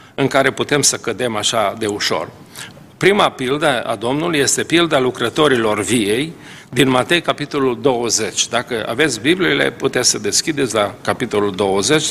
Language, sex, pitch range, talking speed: Romanian, male, 125-165 Hz, 145 wpm